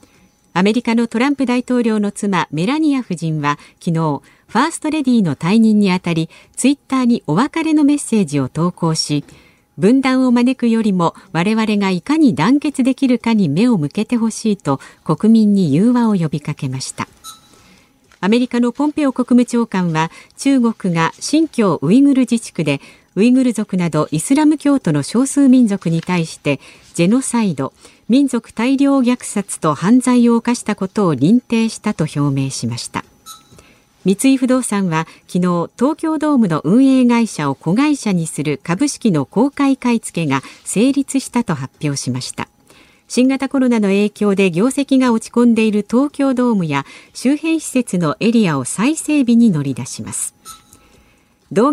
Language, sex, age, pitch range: Japanese, female, 50-69, 170-260 Hz